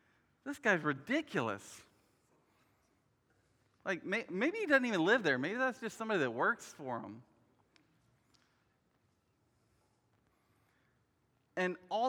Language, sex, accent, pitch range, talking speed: English, male, American, 140-190 Hz, 100 wpm